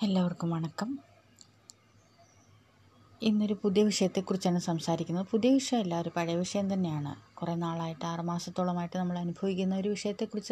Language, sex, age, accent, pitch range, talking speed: Malayalam, female, 20-39, native, 165-195 Hz, 95 wpm